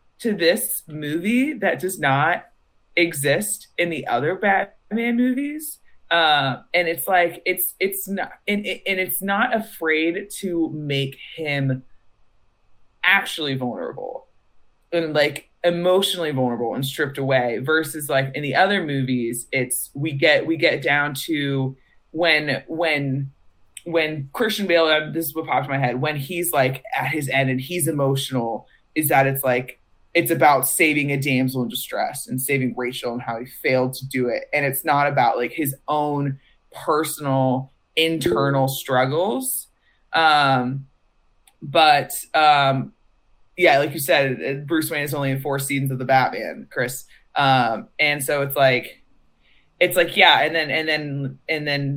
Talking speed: 155 wpm